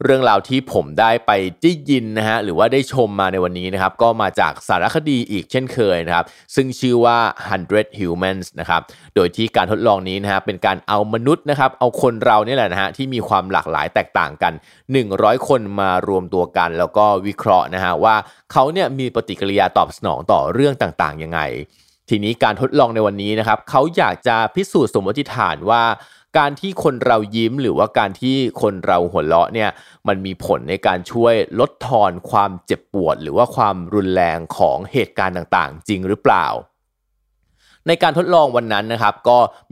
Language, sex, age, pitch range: Thai, male, 20-39, 95-125 Hz